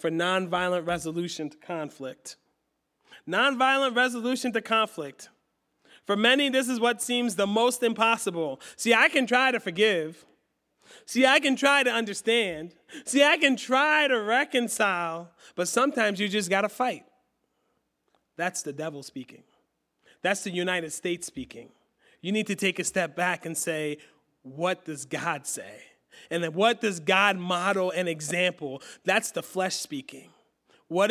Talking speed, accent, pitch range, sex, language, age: 150 wpm, American, 170-245 Hz, male, English, 30-49